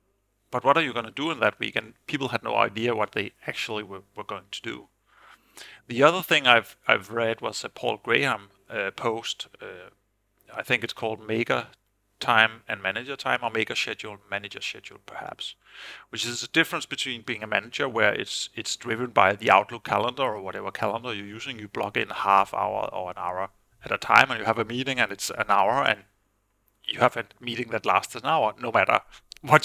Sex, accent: male, Danish